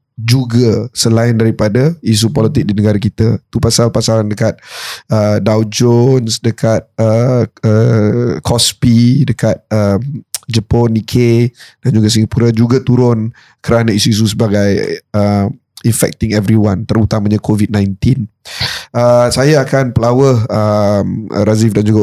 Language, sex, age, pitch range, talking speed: Malay, male, 20-39, 110-125 Hz, 115 wpm